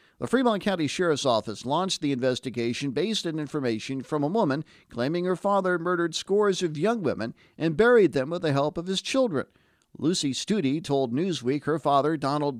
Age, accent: 50-69, American